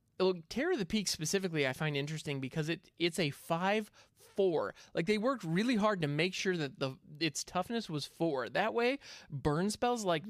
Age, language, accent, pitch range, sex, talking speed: 20-39, English, American, 145-195 Hz, male, 200 wpm